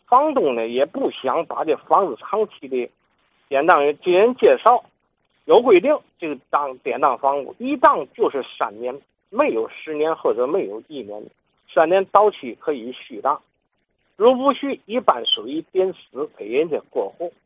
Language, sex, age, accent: Chinese, male, 50-69, native